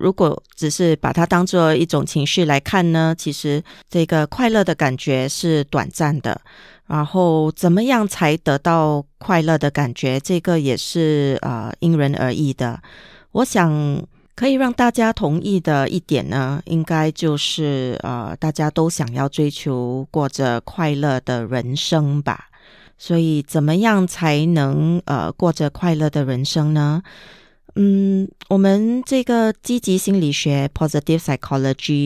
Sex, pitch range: female, 140-175 Hz